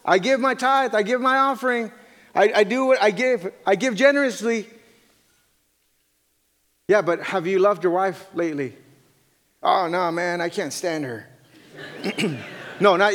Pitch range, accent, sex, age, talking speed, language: 140-200 Hz, American, male, 30-49, 155 wpm, English